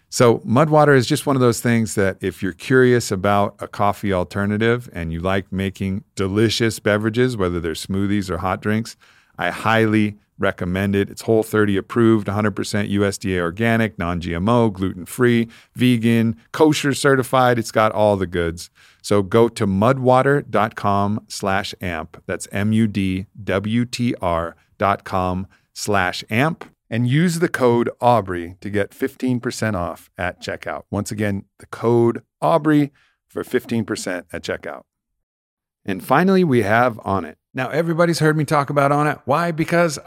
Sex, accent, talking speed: male, American, 140 wpm